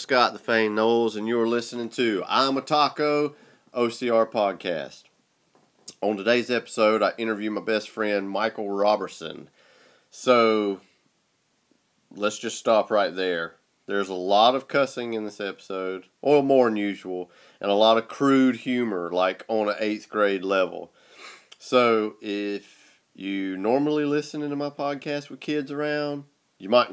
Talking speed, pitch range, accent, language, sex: 145 wpm, 105-135 Hz, American, English, male